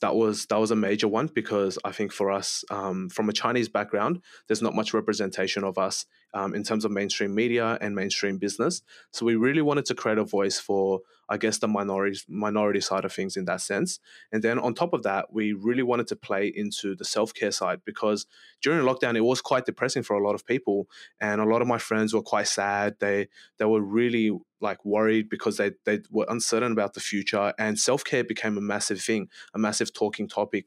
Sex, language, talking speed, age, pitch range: male, English, 220 wpm, 20-39, 100-115 Hz